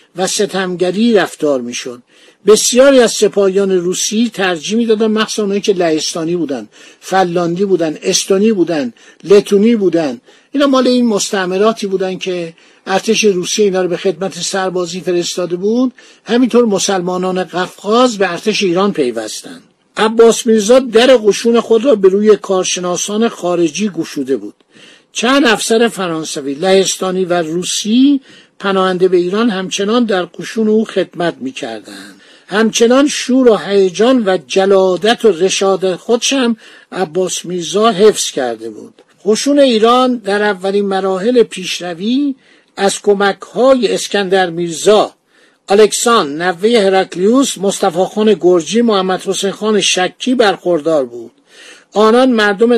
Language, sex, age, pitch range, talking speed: Persian, male, 50-69, 180-225 Hz, 125 wpm